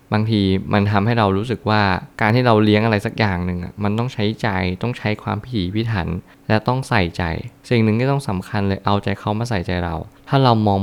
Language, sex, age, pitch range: Thai, male, 20-39, 95-115 Hz